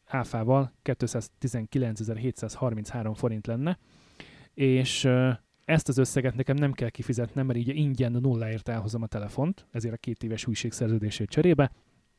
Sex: male